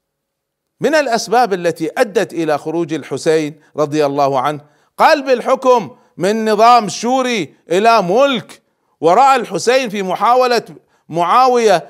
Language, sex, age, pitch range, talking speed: Arabic, male, 40-59, 150-220 Hz, 110 wpm